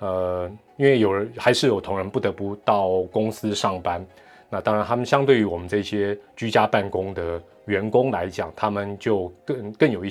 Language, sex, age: Chinese, male, 20-39